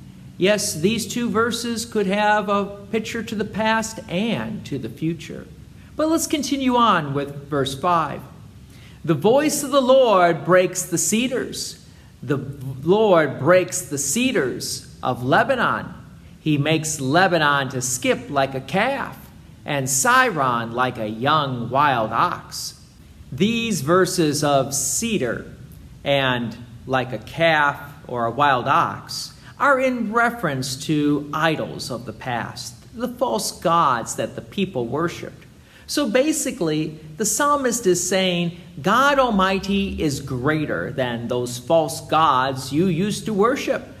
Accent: American